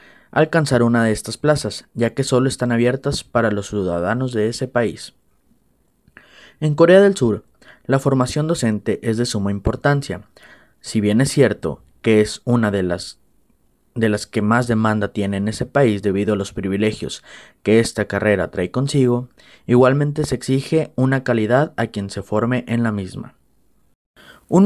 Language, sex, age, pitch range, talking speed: Spanish, male, 30-49, 105-135 Hz, 160 wpm